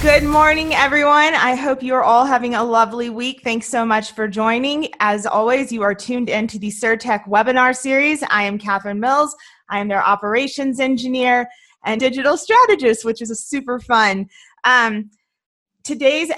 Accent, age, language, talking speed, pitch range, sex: American, 20-39, English, 170 wpm, 235-285 Hz, female